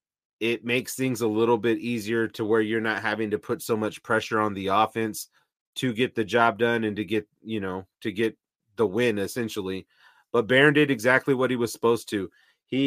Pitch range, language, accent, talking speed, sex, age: 110-125 Hz, English, American, 210 wpm, male, 30-49